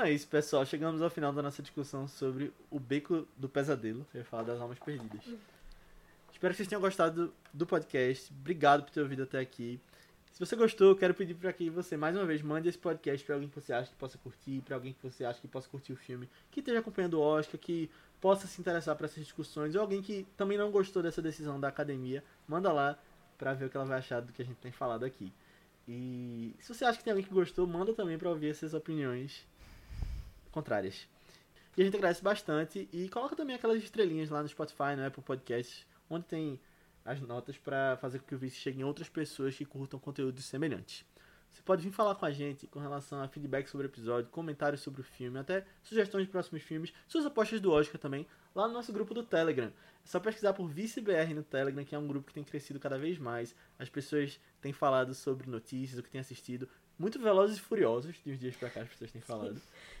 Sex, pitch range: male, 135-180 Hz